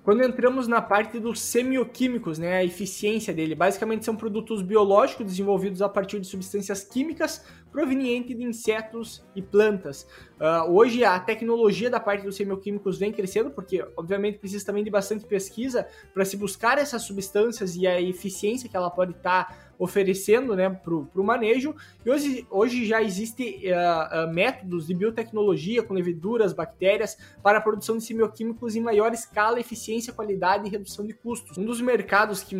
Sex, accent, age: male, Brazilian, 20-39